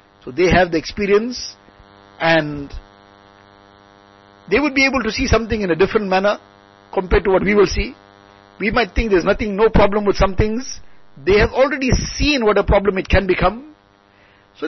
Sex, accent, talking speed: male, Indian, 185 wpm